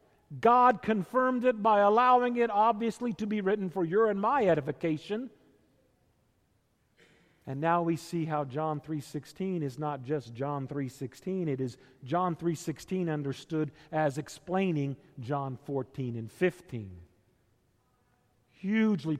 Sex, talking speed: male, 120 wpm